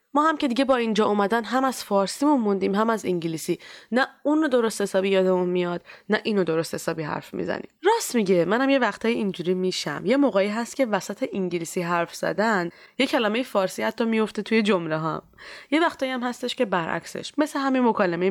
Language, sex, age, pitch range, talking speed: Persian, female, 20-39, 175-245 Hz, 195 wpm